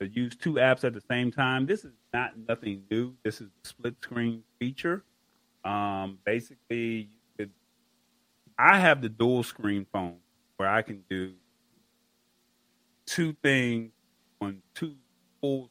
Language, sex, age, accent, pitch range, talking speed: English, male, 30-49, American, 100-125 Hz, 140 wpm